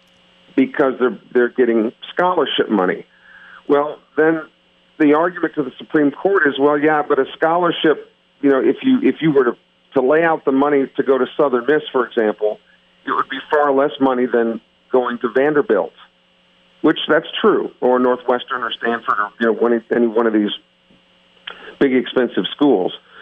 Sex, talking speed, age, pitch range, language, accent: male, 175 wpm, 50-69, 115-160 Hz, English, American